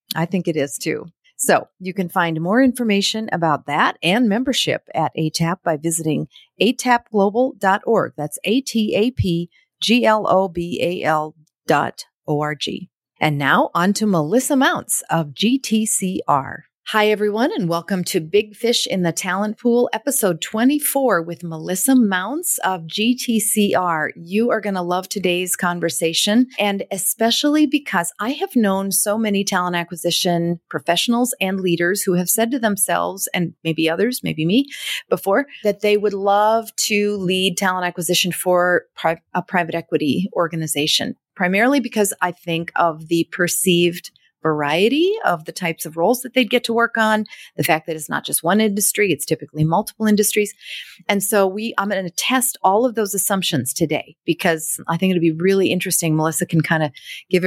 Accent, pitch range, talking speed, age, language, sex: American, 170-220 Hz, 155 wpm, 40-59, English, female